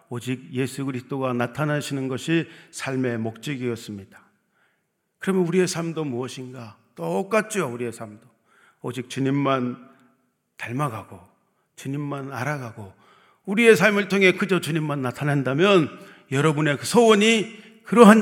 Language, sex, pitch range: Korean, male, 130-185 Hz